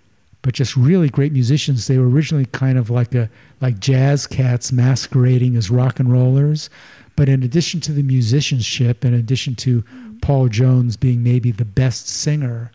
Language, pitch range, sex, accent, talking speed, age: English, 115-135 Hz, male, American, 170 wpm, 50-69